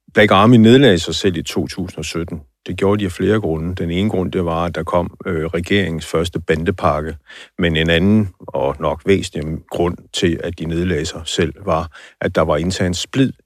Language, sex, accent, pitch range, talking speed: Danish, male, native, 80-95 Hz, 200 wpm